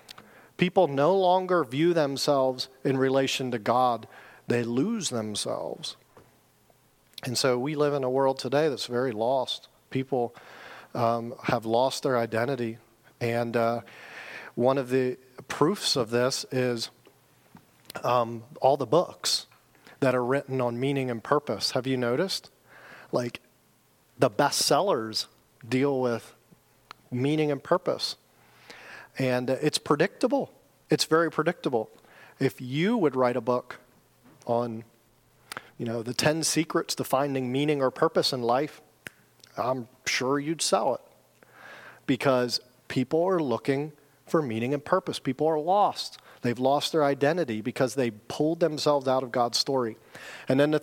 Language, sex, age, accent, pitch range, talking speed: English, male, 40-59, American, 120-145 Hz, 135 wpm